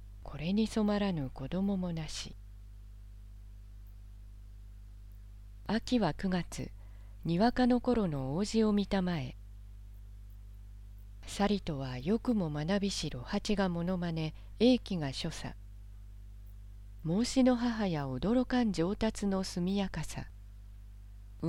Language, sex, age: Japanese, female, 40-59